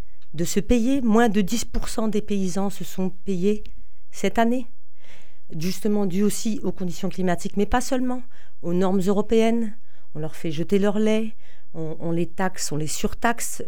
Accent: French